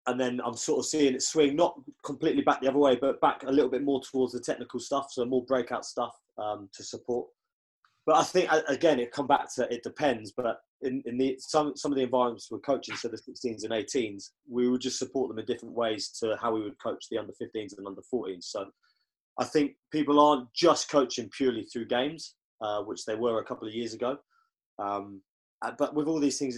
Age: 20-39